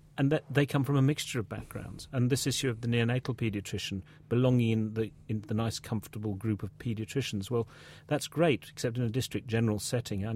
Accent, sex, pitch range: British, male, 110-135 Hz